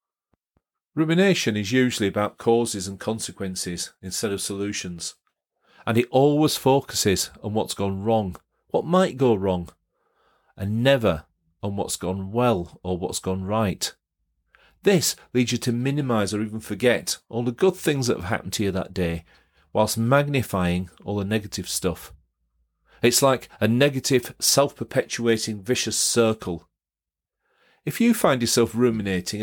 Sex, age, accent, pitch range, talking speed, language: male, 40-59, British, 95-130 Hz, 140 wpm, English